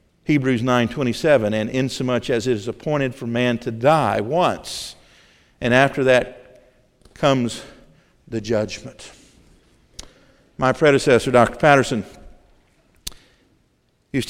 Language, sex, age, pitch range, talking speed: English, male, 50-69, 115-135 Hz, 100 wpm